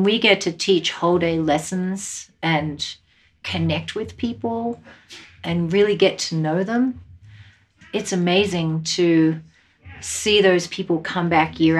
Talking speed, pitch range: 130 wpm, 160-185 Hz